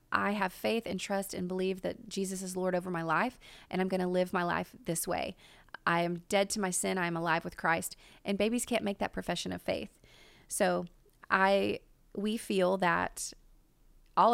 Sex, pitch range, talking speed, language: female, 185-215 Hz, 195 wpm, English